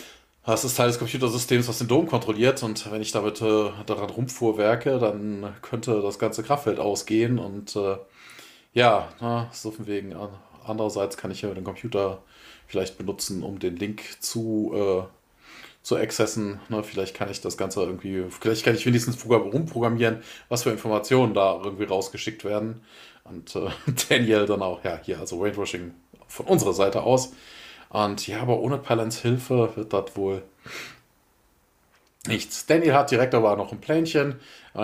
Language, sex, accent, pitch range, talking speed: German, male, German, 100-120 Hz, 165 wpm